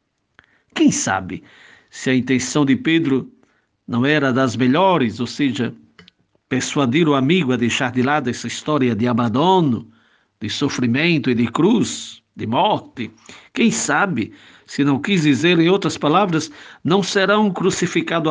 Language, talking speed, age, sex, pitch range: Portuguese, 145 wpm, 60-79, male, 125-170 Hz